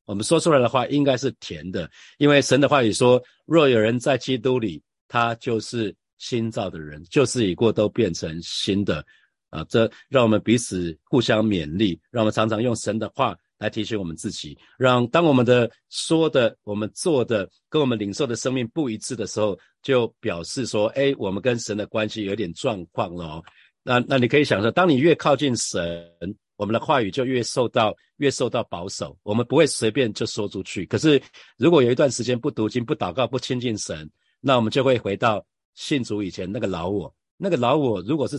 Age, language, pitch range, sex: 50-69, Chinese, 100-130 Hz, male